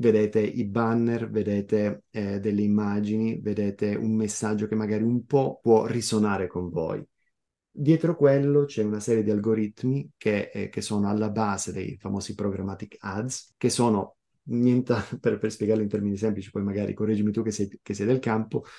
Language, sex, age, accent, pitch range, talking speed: Italian, male, 30-49, native, 105-120 Hz, 170 wpm